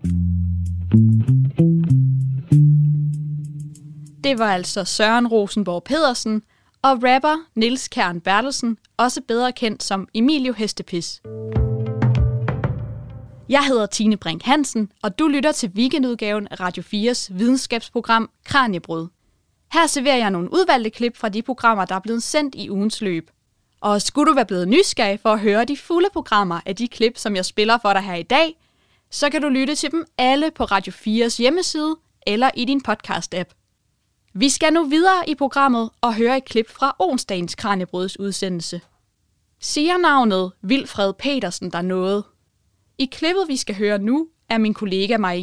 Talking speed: 155 wpm